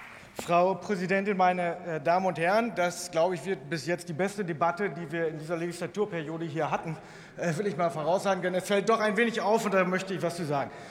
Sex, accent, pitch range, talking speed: male, German, 190-235 Hz, 220 wpm